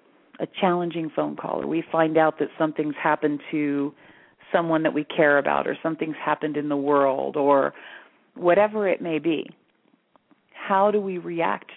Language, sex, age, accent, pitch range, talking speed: English, female, 40-59, American, 150-200 Hz, 165 wpm